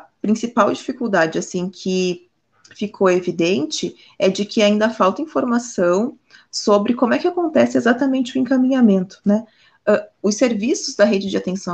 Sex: female